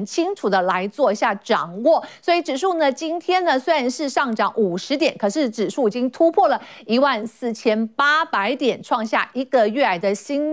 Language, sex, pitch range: Chinese, female, 230-330 Hz